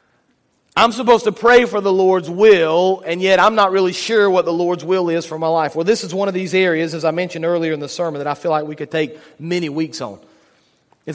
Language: English